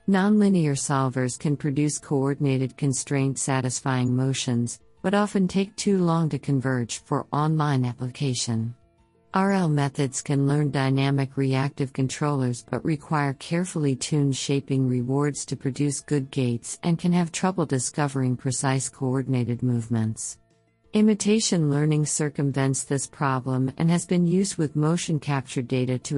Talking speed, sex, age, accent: 130 wpm, female, 50-69, American